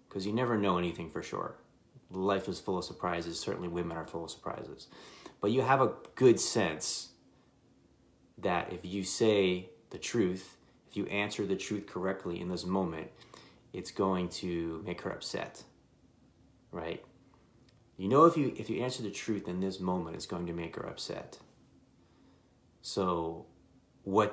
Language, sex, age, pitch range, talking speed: English, male, 30-49, 85-105 Hz, 160 wpm